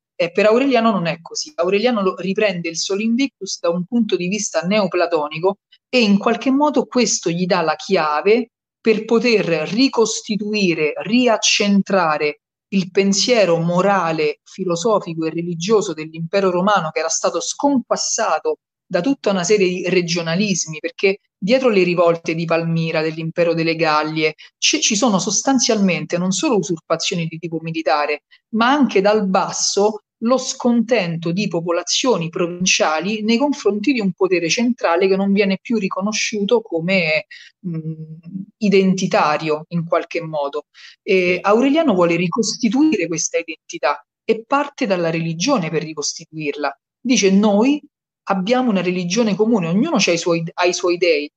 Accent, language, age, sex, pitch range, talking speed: native, Italian, 40-59, female, 165-220 Hz, 135 wpm